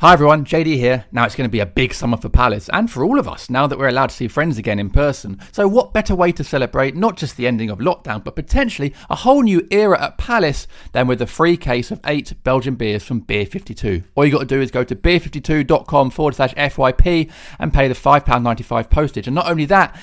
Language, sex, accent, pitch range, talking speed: English, male, British, 125-165 Hz, 245 wpm